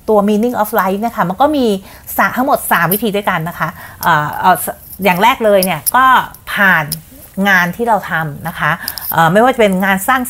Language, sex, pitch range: Thai, female, 165-215 Hz